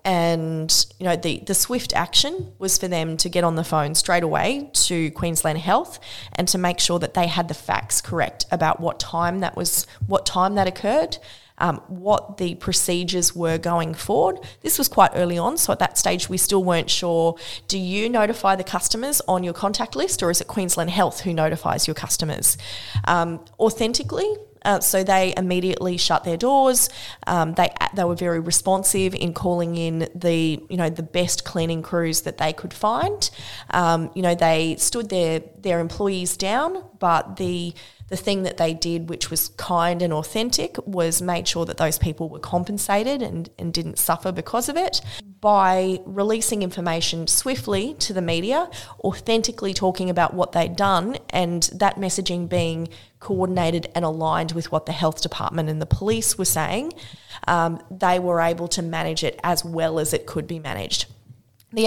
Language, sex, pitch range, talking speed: English, female, 165-190 Hz, 180 wpm